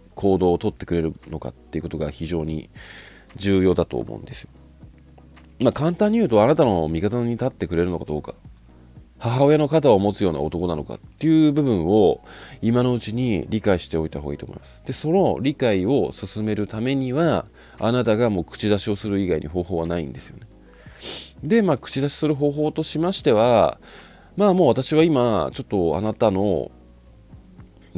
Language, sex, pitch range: Japanese, male, 80-120 Hz